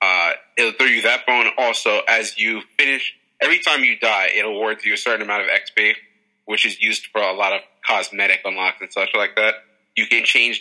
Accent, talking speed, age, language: American, 215 wpm, 30-49, English